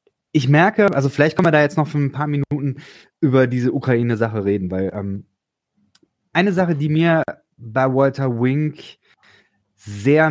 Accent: German